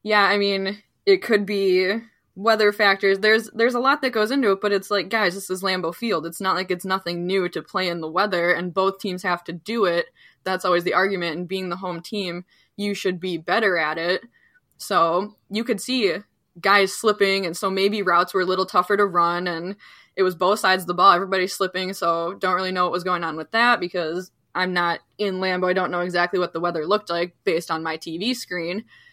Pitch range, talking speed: 175-205 Hz, 230 wpm